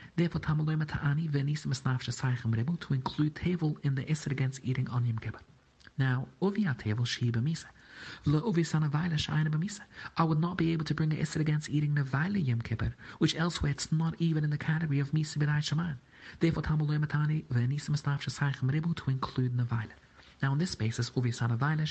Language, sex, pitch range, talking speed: English, male, 130-155 Hz, 185 wpm